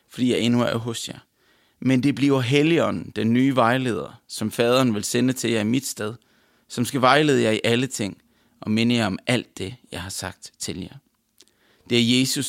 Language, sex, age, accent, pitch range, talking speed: English, male, 30-49, Danish, 115-140 Hz, 205 wpm